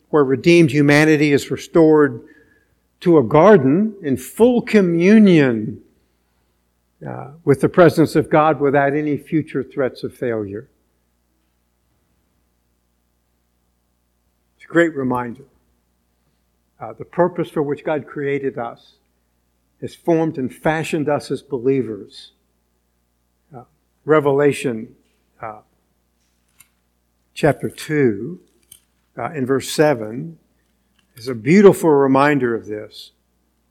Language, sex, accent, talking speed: English, male, American, 100 wpm